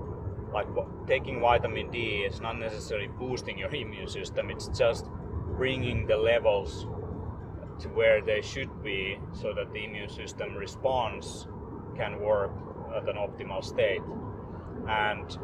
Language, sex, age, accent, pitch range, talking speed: English, male, 30-49, Finnish, 100-130 Hz, 130 wpm